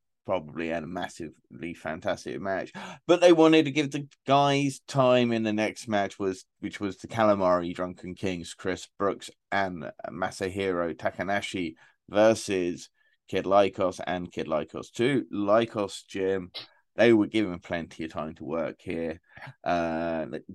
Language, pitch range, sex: English, 85-105 Hz, male